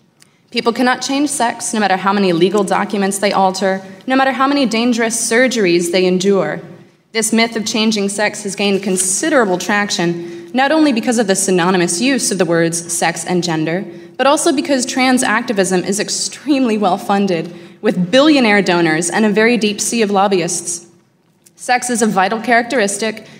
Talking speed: 165 wpm